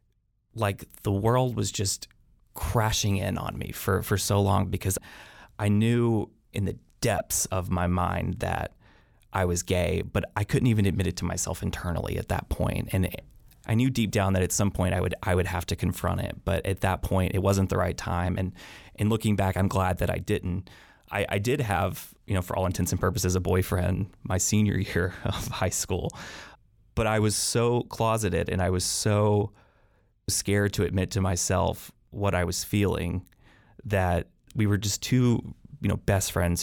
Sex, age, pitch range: male, 20-39, 90-110 Hz